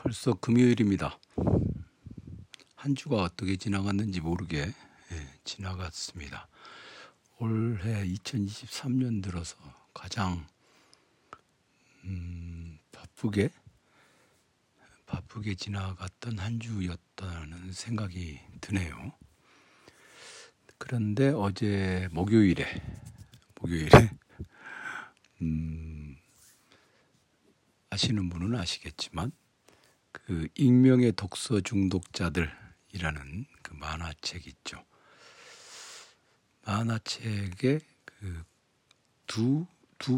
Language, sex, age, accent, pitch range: Korean, male, 60-79, native, 85-110 Hz